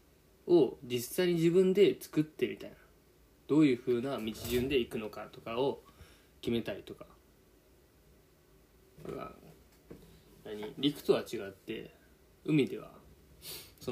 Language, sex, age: Japanese, male, 20-39